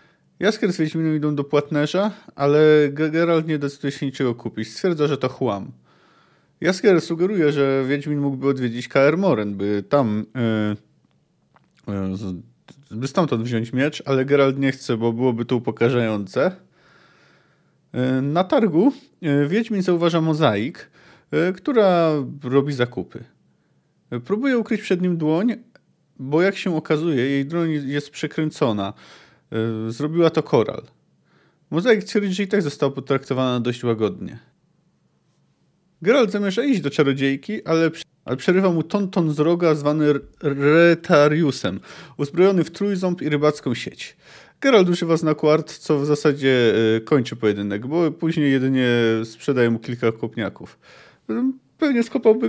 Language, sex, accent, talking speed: Polish, male, native, 130 wpm